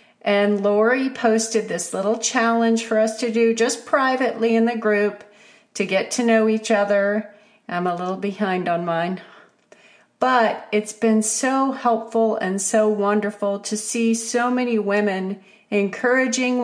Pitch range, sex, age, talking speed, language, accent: 205-245 Hz, female, 40-59, 150 wpm, English, American